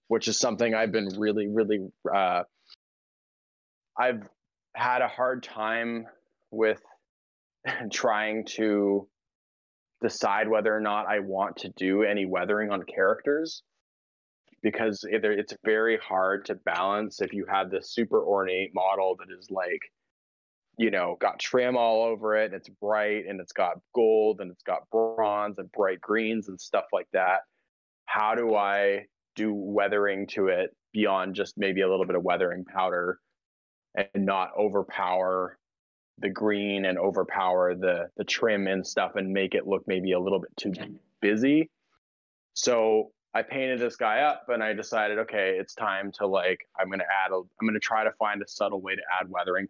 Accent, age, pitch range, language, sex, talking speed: American, 20-39, 95-110 Hz, English, male, 165 wpm